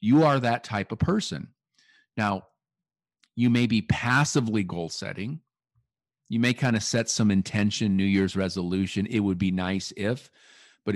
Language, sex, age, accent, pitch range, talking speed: English, male, 50-69, American, 105-140 Hz, 160 wpm